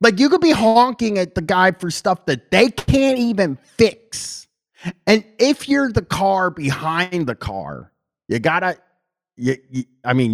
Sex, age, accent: male, 30-49, American